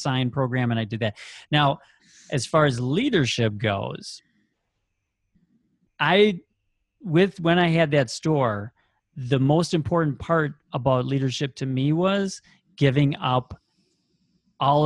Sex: male